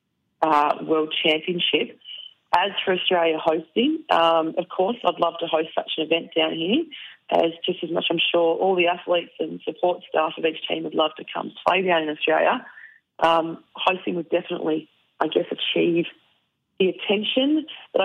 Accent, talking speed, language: Australian, 175 wpm, English